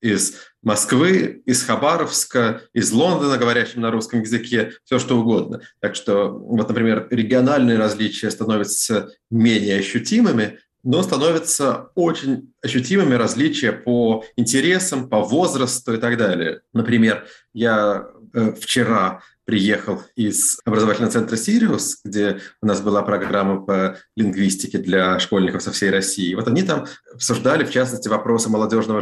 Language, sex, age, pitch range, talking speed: Russian, male, 30-49, 105-125 Hz, 130 wpm